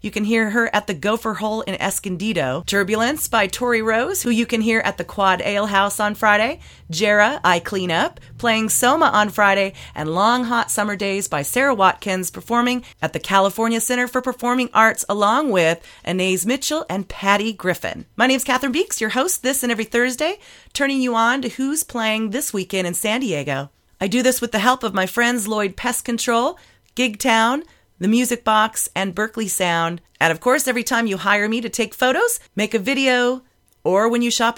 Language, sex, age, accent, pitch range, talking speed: English, female, 30-49, American, 195-240 Hz, 200 wpm